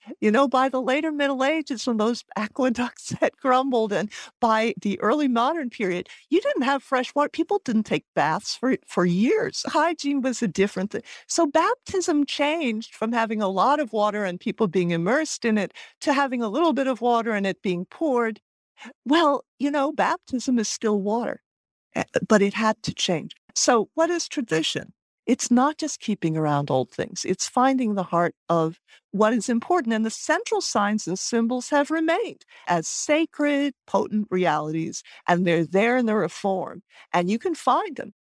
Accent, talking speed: American, 180 wpm